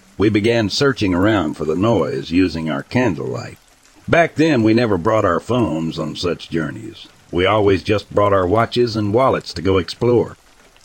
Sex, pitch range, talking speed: male, 85-120 Hz, 170 wpm